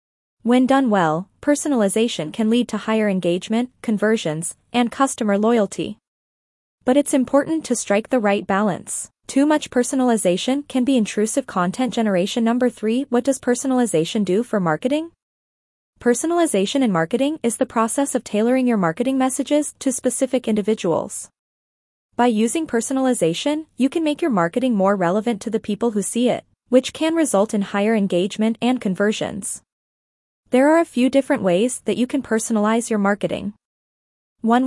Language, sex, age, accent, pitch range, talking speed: English, female, 20-39, American, 205-265 Hz, 150 wpm